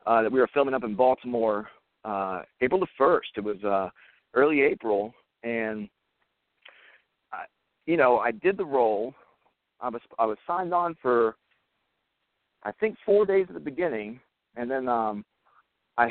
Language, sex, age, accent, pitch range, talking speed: English, male, 40-59, American, 110-140 Hz, 160 wpm